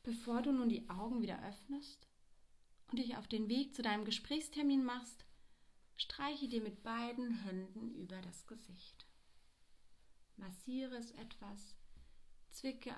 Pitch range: 190-255 Hz